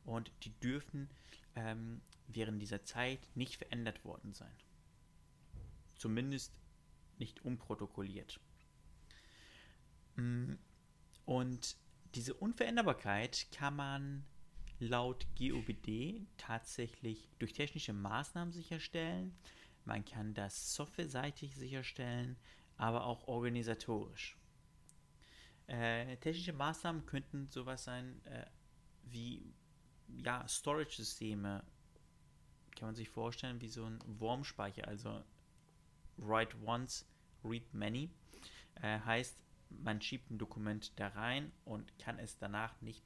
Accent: German